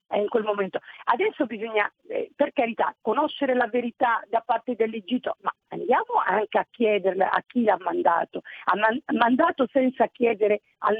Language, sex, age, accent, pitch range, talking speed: Italian, female, 50-69, native, 225-315 Hz, 155 wpm